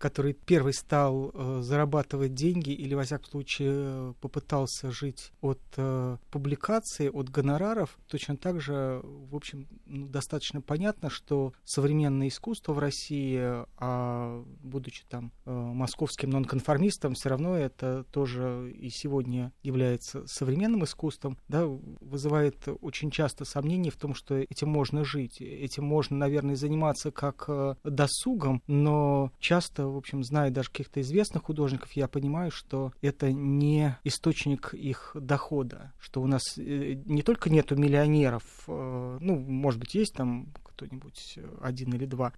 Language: Russian